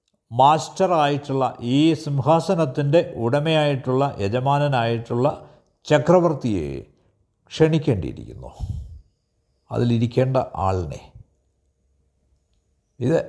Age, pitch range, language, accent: 60-79, 95-145 Hz, Malayalam, native